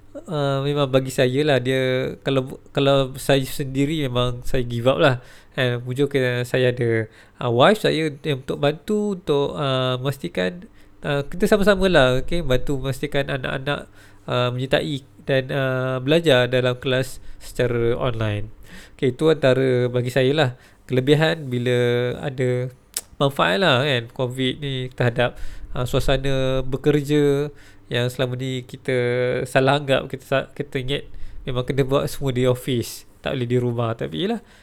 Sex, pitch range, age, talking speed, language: male, 125-145 Hz, 20-39, 145 wpm, Malay